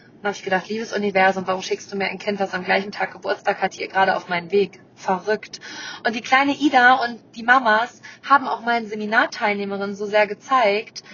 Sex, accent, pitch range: female, German, 215-260 Hz